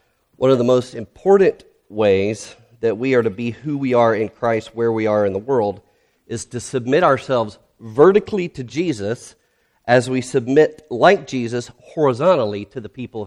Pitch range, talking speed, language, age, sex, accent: 105-130 Hz, 170 wpm, English, 40-59, male, American